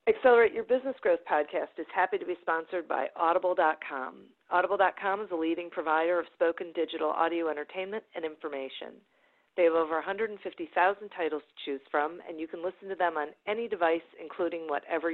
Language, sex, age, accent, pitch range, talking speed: English, female, 40-59, American, 155-200 Hz, 170 wpm